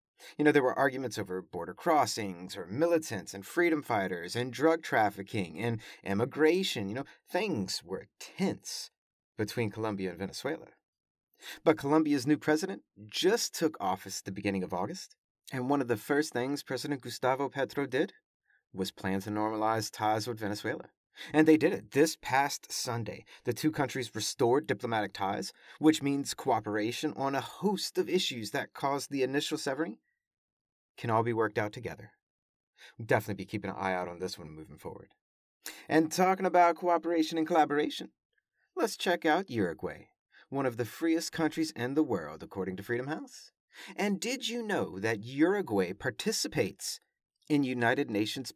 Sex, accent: male, American